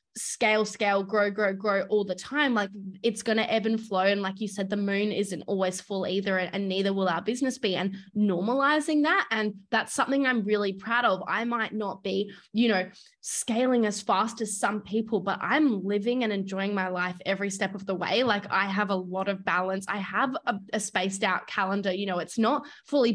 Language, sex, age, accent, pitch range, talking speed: English, female, 10-29, Australian, 195-230 Hz, 220 wpm